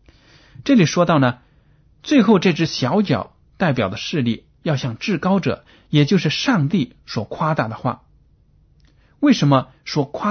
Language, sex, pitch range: Chinese, male, 120-165 Hz